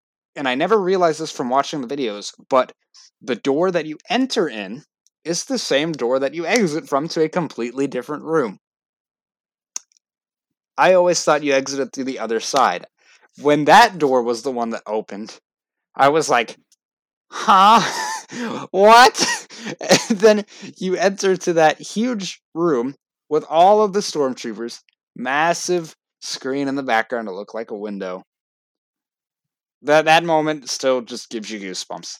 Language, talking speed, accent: English, 155 wpm, American